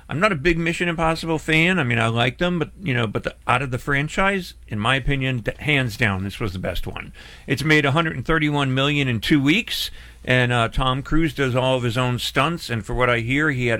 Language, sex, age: English, male, 50-69